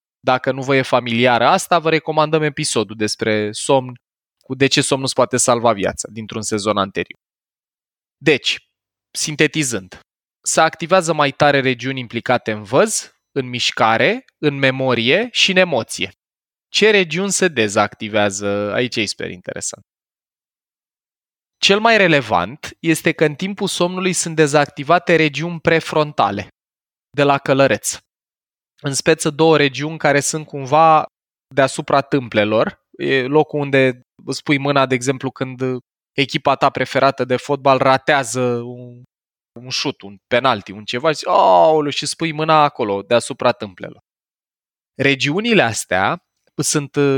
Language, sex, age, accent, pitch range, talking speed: Romanian, male, 20-39, native, 125-155 Hz, 130 wpm